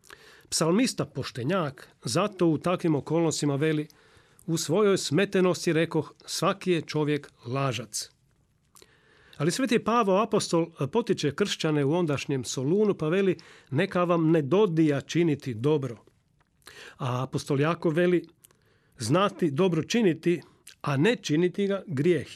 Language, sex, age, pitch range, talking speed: Croatian, male, 40-59, 145-180 Hz, 115 wpm